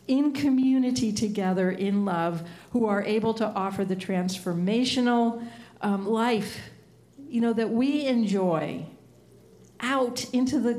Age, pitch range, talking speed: 50-69, 185-225 Hz, 120 wpm